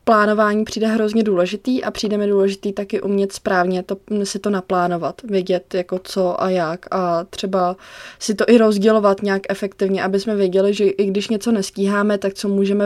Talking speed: 180 wpm